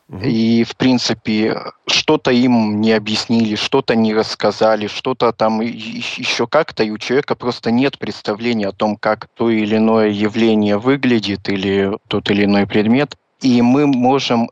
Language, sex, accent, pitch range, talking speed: Russian, male, native, 110-125 Hz, 150 wpm